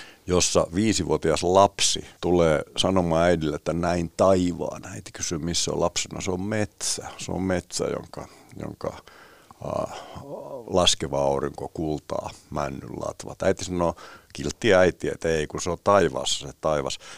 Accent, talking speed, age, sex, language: native, 145 wpm, 60-79, male, Finnish